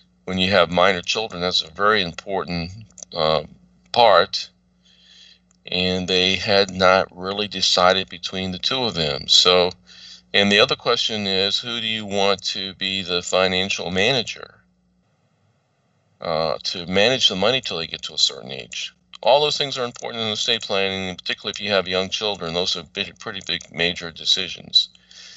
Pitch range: 90-105 Hz